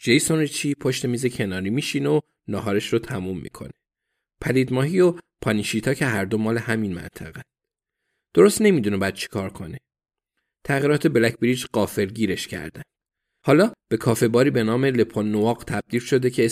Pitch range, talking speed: 105-130 Hz, 155 wpm